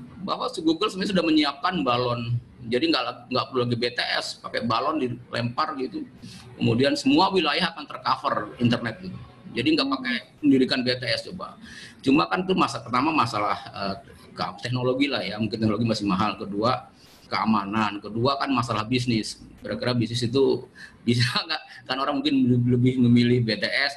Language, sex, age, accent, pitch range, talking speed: Indonesian, male, 30-49, native, 115-140 Hz, 150 wpm